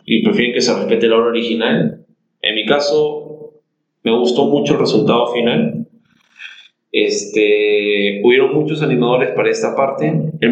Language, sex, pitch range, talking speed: Spanish, male, 110-145 Hz, 145 wpm